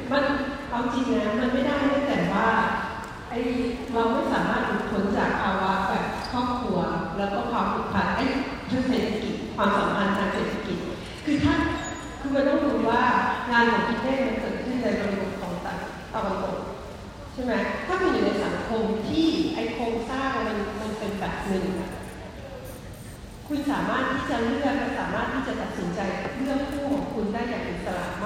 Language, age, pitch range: Thai, 40-59, 205-265 Hz